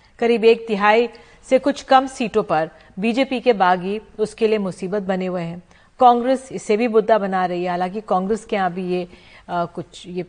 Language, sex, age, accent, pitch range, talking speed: Hindi, female, 40-59, native, 185-240 Hz, 190 wpm